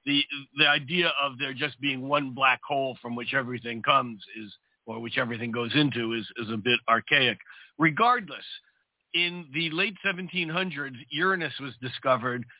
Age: 60-79